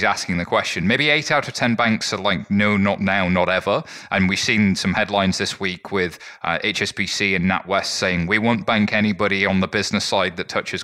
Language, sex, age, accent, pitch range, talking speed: English, male, 30-49, British, 95-120 Hz, 215 wpm